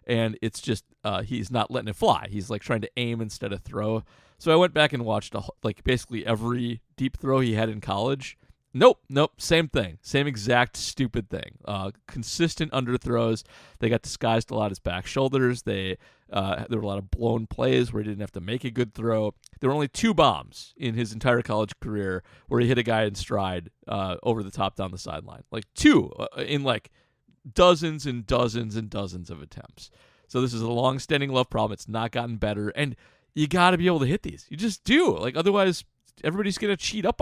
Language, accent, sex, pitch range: English, American, male, 105-135 Hz